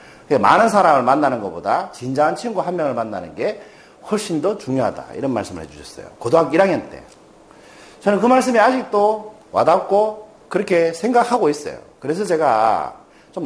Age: 40-59